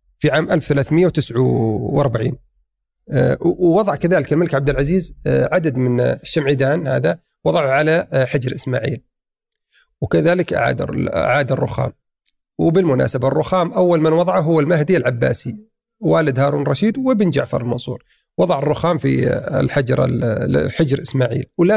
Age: 40-59